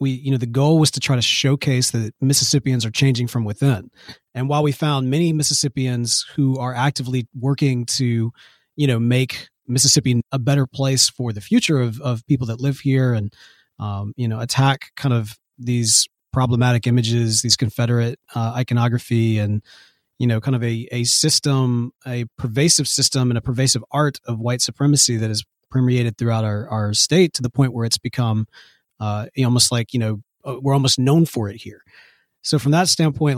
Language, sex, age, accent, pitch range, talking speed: English, male, 30-49, American, 120-140 Hz, 185 wpm